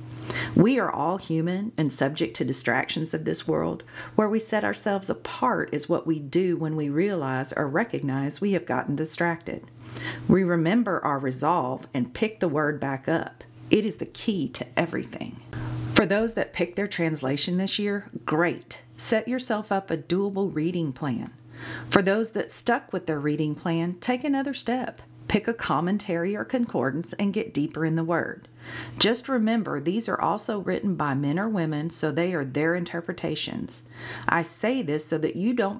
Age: 40-59